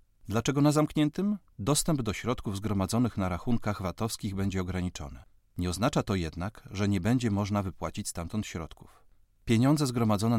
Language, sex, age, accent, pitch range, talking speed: Polish, male, 40-59, native, 95-120 Hz, 145 wpm